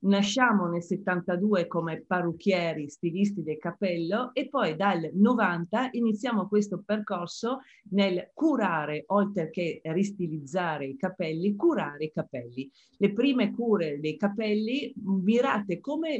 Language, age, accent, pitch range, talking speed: Italian, 40-59, native, 160-200 Hz, 120 wpm